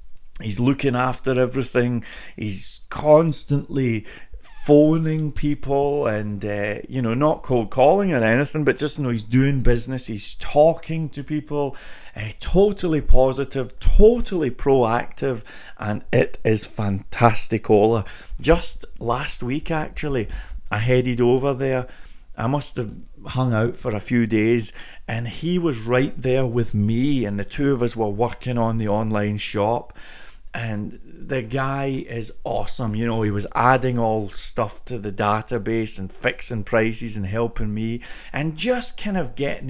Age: 30-49